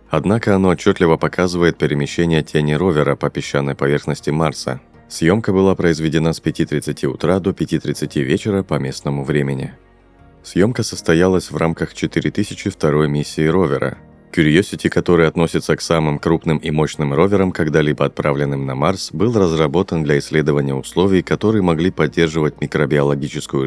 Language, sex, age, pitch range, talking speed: Russian, male, 30-49, 75-90 Hz, 130 wpm